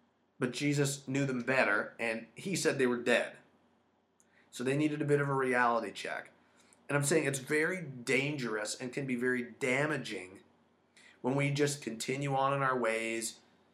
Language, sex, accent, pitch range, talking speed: English, male, American, 120-140 Hz, 170 wpm